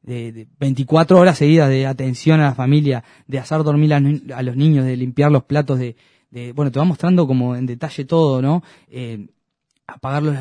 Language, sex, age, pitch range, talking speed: Spanish, male, 20-39, 120-140 Hz, 210 wpm